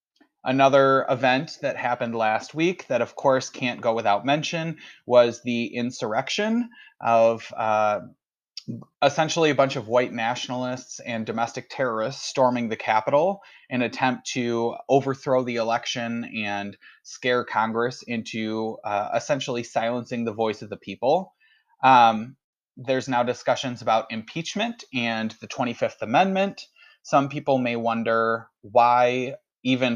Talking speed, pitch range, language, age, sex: 130 wpm, 115-140 Hz, English, 30-49, male